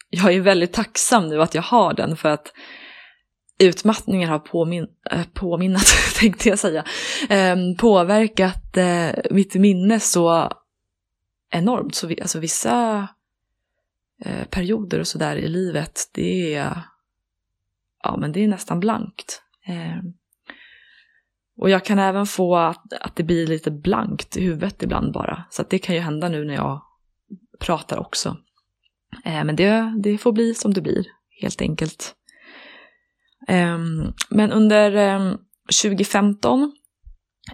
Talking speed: 125 wpm